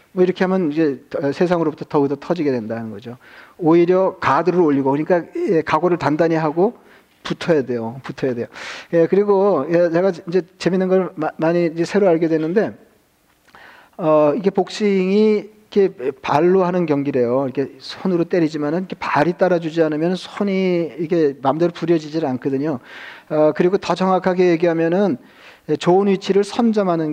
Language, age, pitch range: Korean, 40-59, 155-185 Hz